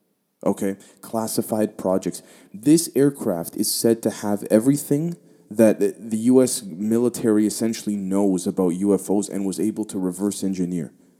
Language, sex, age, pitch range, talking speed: English, male, 20-39, 95-120 Hz, 130 wpm